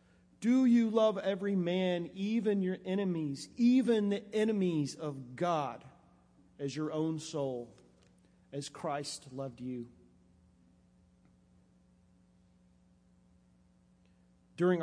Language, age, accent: English, 40-59, American